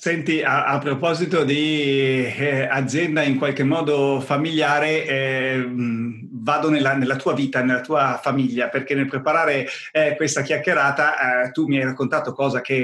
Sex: male